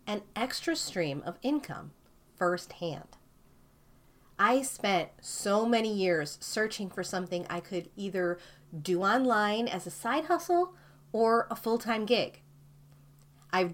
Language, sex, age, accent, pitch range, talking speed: English, female, 40-59, American, 175-235 Hz, 120 wpm